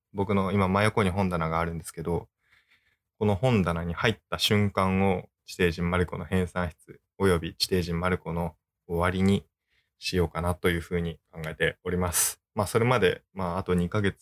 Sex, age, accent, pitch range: male, 20-39, native, 85-100 Hz